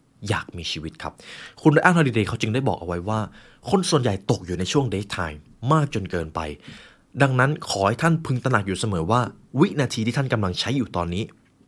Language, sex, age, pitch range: Thai, male, 20-39, 90-140 Hz